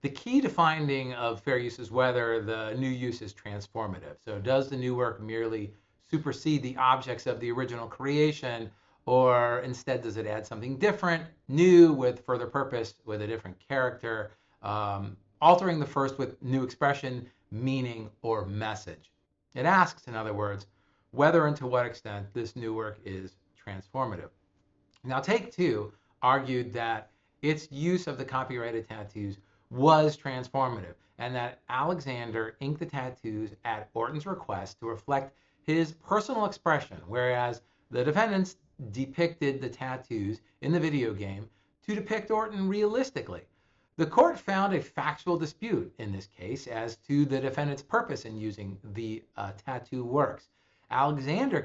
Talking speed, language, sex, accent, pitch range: 150 wpm, English, male, American, 110-145 Hz